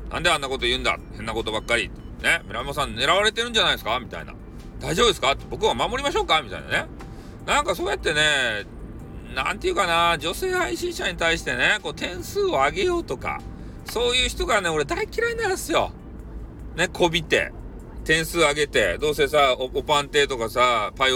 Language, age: Japanese, 40-59